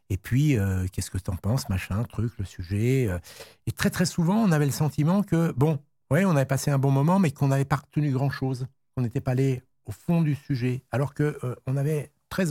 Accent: French